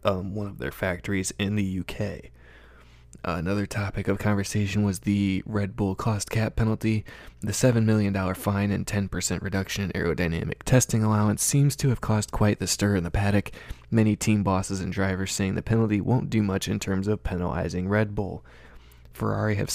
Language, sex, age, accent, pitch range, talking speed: English, male, 20-39, American, 95-110 Hz, 180 wpm